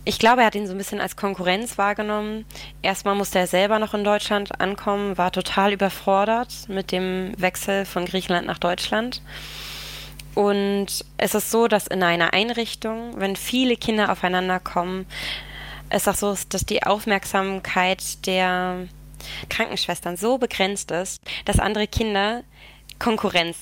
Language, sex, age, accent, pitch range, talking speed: German, female, 20-39, German, 175-205 Hz, 145 wpm